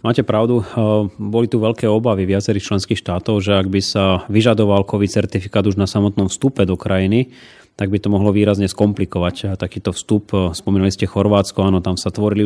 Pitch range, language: 95-110 Hz, Slovak